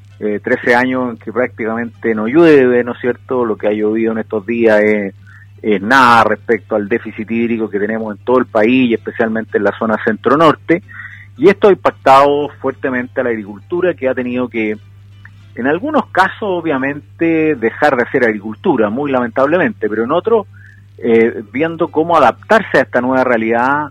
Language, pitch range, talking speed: Spanish, 105-135 Hz, 175 wpm